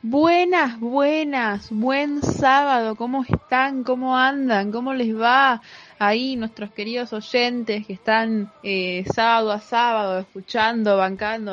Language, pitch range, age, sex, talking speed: Spanish, 175-225 Hz, 20-39, female, 120 wpm